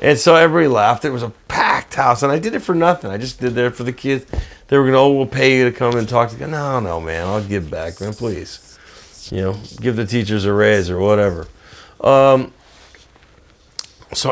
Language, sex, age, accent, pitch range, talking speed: English, male, 50-69, American, 100-125 Hz, 230 wpm